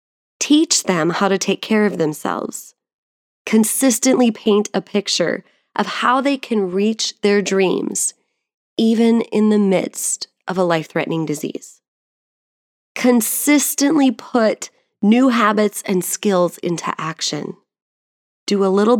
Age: 20-39